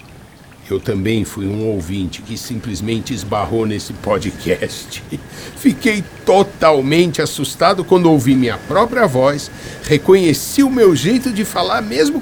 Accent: Brazilian